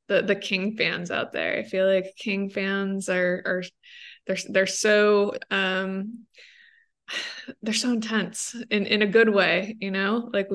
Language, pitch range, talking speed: English, 190-220 Hz, 160 wpm